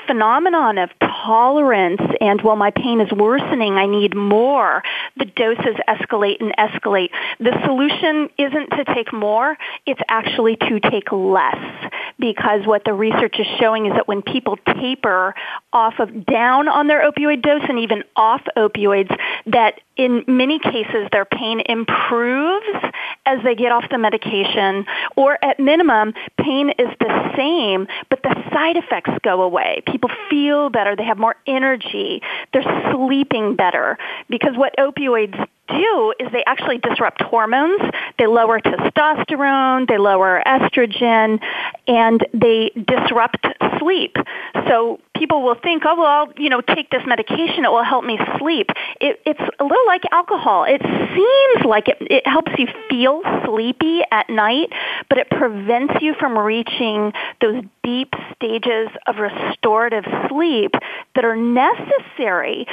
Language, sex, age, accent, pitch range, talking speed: English, female, 40-59, American, 220-290 Hz, 145 wpm